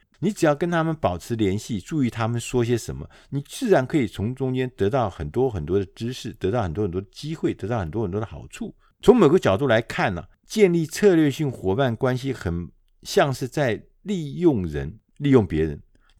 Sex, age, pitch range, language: male, 50-69, 100-150 Hz, Chinese